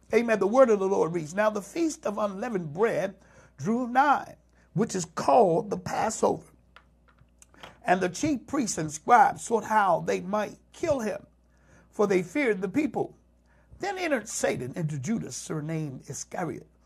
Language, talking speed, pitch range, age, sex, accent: English, 155 wpm, 150-225 Hz, 60-79, male, American